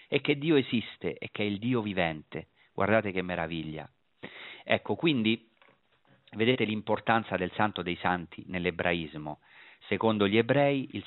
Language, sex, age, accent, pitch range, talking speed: Italian, male, 40-59, native, 90-130 Hz, 140 wpm